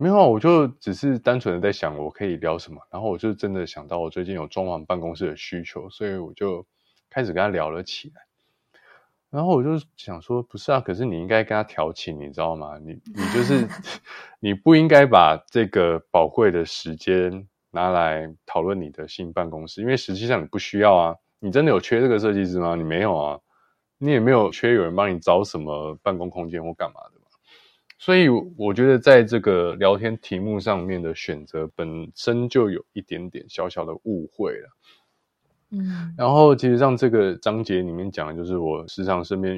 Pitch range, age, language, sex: 85-120 Hz, 20-39, Chinese, male